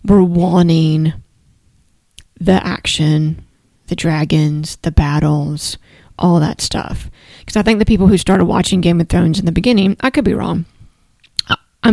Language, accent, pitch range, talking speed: English, American, 170-195 Hz, 150 wpm